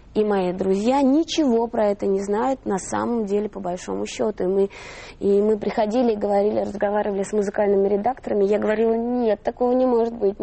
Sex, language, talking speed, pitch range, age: female, Russian, 185 wpm, 190-230 Hz, 20-39